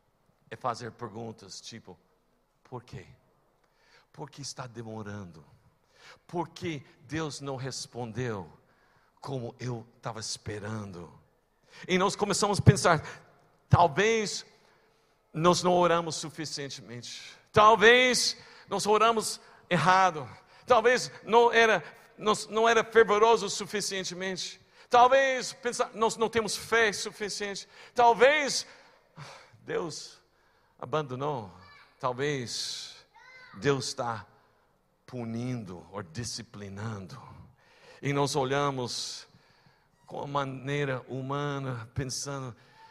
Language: Portuguese